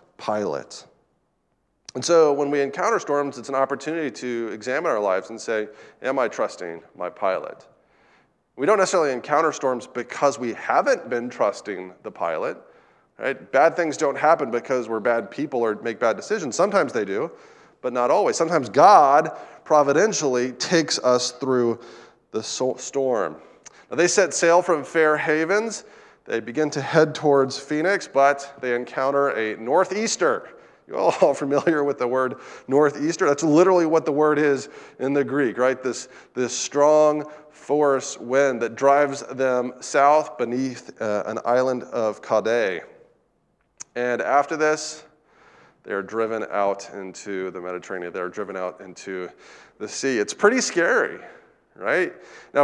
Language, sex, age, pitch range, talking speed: English, male, 30-49, 125-155 Hz, 145 wpm